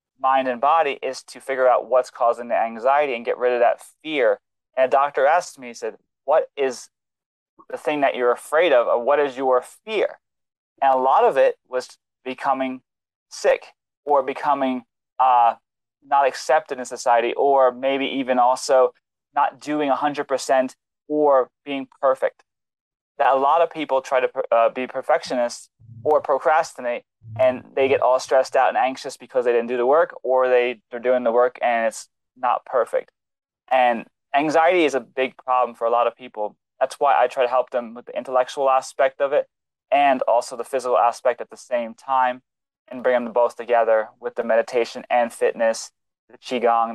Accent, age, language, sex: American, 20-39, English, male